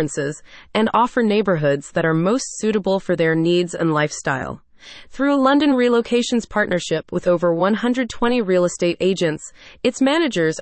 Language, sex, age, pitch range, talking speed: English, female, 30-49, 170-240 Hz, 140 wpm